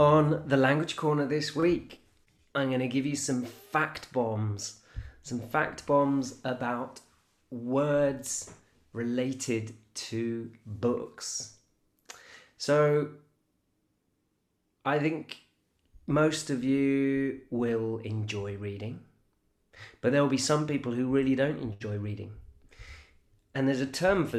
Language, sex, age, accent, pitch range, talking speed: English, male, 30-49, British, 105-135 Hz, 115 wpm